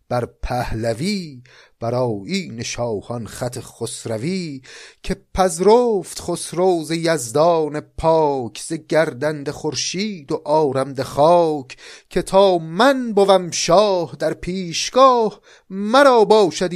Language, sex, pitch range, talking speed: Persian, male, 115-165 Hz, 95 wpm